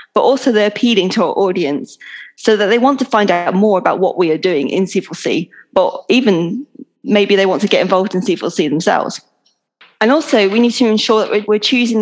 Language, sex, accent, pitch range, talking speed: English, female, British, 190-235 Hz, 210 wpm